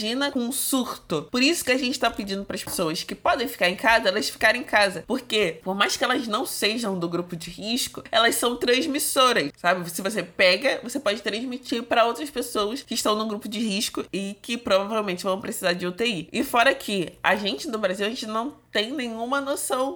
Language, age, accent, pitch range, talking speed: Portuguese, 20-39, Brazilian, 195-255 Hz, 215 wpm